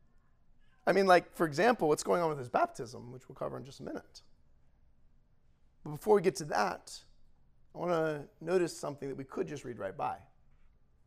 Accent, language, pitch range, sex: American, English, 135-185 Hz, male